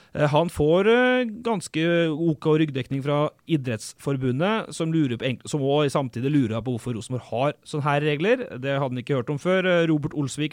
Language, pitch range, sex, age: English, 135-170 Hz, male, 30-49